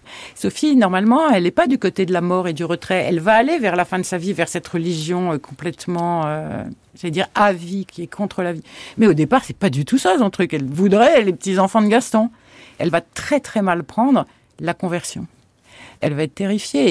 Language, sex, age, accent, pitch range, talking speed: French, female, 50-69, French, 160-205 Hz, 230 wpm